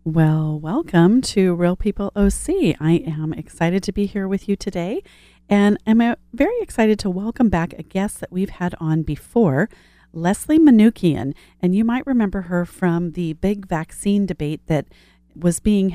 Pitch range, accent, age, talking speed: 165-200 Hz, American, 40-59, 165 wpm